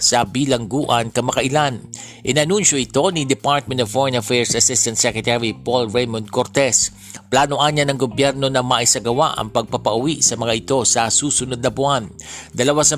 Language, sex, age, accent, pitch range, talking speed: Filipino, male, 50-69, native, 115-135 Hz, 150 wpm